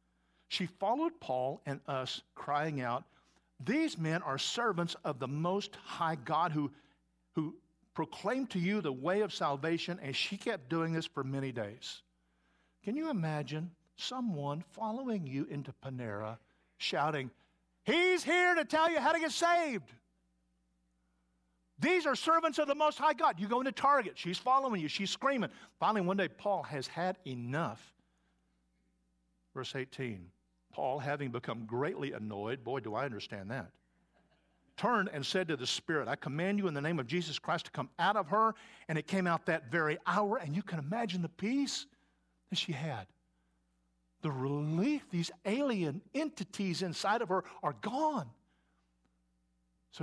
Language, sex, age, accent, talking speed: English, male, 50-69, American, 160 wpm